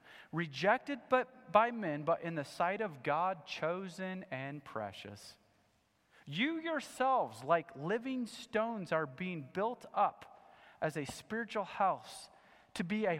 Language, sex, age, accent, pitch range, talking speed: English, male, 30-49, American, 155-220 Hz, 130 wpm